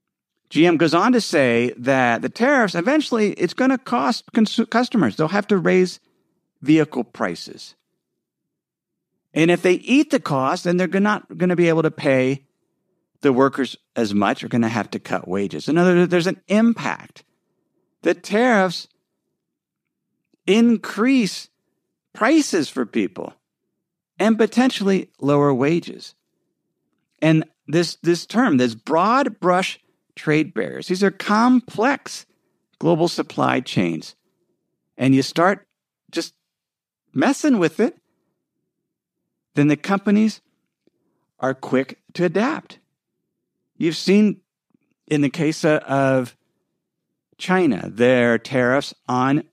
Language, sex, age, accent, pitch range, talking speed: English, male, 50-69, American, 145-215 Hz, 120 wpm